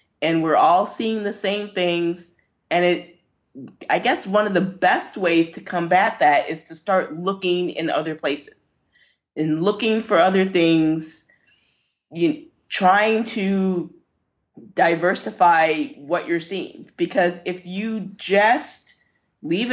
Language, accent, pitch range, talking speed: English, American, 170-215 Hz, 130 wpm